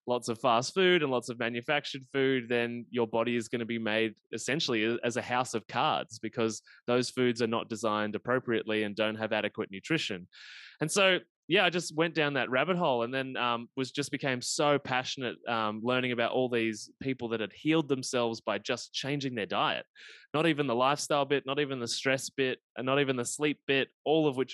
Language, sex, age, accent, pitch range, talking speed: English, male, 20-39, Australian, 115-145 Hz, 215 wpm